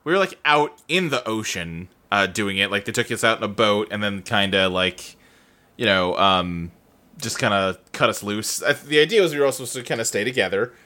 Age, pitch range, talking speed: 30-49, 120-175 Hz, 255 wpm